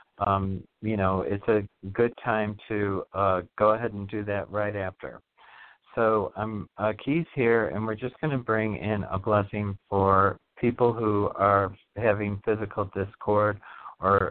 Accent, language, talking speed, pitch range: American, English, 160 wpm, 100-120 Hz